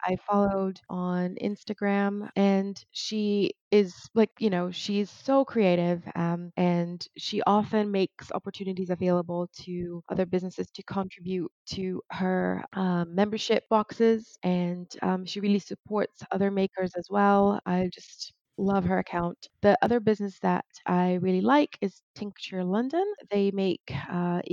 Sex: female